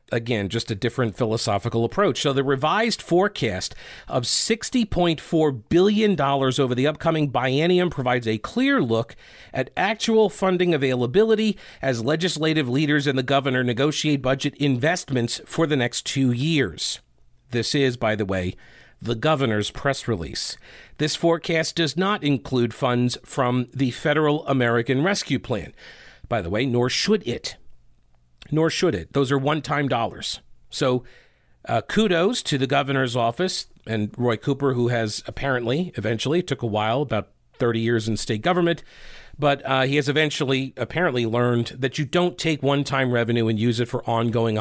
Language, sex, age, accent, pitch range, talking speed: English, male, 50-69, American, 120-155 Hz, 155 wpm